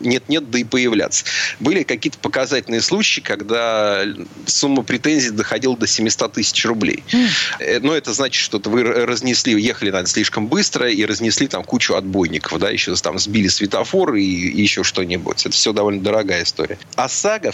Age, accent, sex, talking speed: 30-49, native, male, 155 wpm